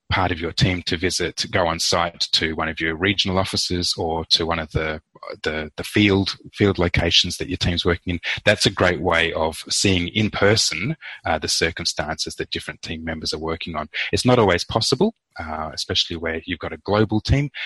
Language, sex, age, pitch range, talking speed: English, male, 30-49, 80-100 Hz, 205 wpm